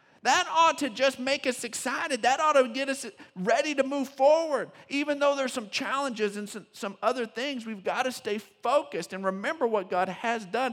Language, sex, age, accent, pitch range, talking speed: English, male, 50-69, American, 135-210 Hz, 205 wpm